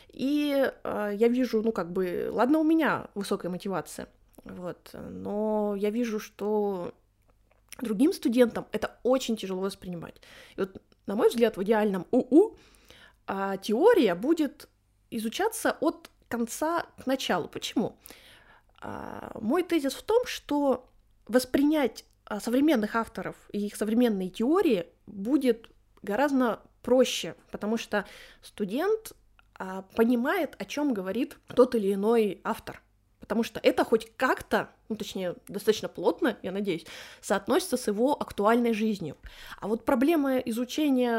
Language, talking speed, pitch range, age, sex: Russian, 120 wpm, 205-270 Hz, 20-39, female